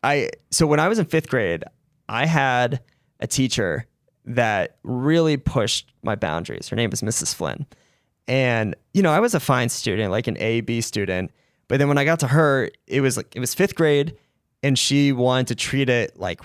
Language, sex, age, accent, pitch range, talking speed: English, male, 20-39, American, 110-145 Hz, 205 wpm